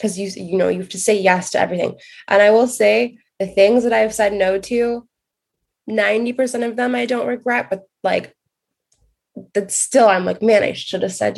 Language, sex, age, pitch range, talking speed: English, female, 20-39, 185-235 Hz, 205 wpm